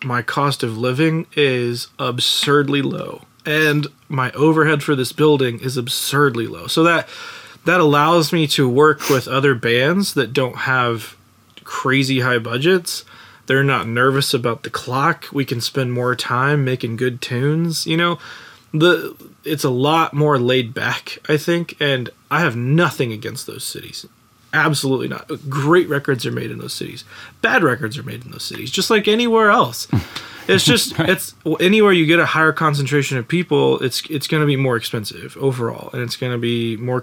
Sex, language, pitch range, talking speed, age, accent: male, English, 125-155 Hz, 175 wpm, 20-39, American